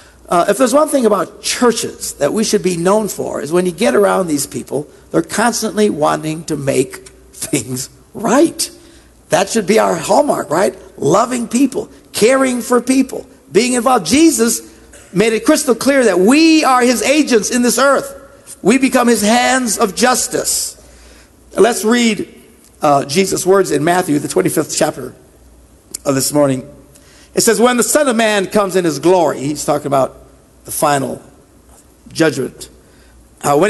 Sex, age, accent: male, 50-69, American